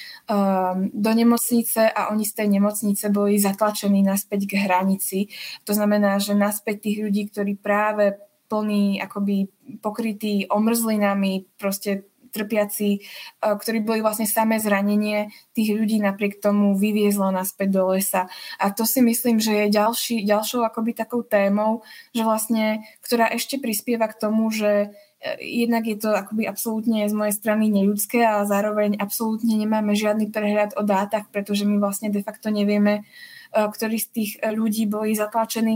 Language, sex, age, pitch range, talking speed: Slovak, female, 20-39, 205-225 Hz, 145 wpm